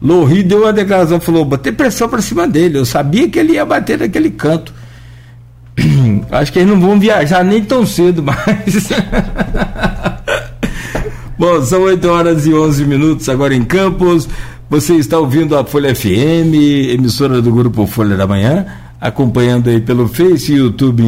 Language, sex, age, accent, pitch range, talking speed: Portuguese, male, 60-79, Brazilian, 120-170 Hz, 160 wpm